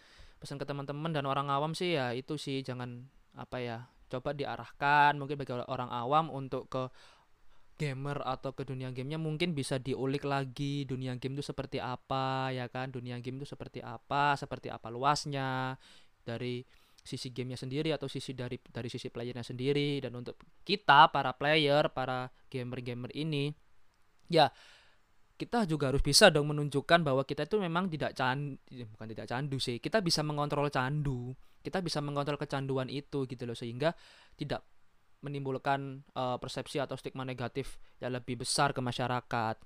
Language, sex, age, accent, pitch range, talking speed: Indonesian, male, 20-39, native, 125-145 Hz, 160 wpm